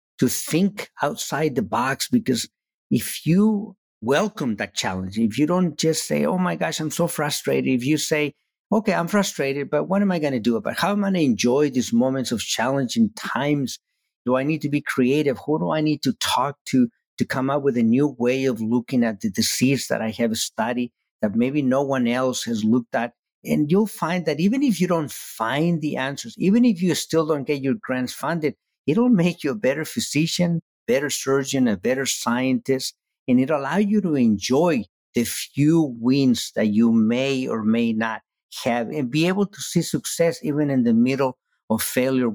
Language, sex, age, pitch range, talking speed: English, male, 50-69, 125-170 Hz, 205 wpm